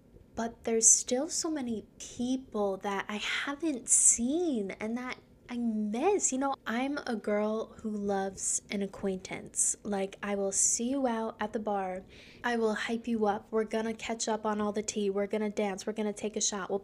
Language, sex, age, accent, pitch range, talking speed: English, female, 10-29, American, 215-260 Hz, 190 wpm